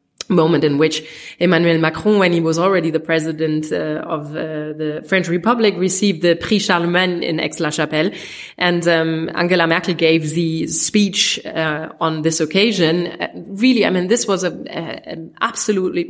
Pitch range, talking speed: 160-190 Hz, 160 wpm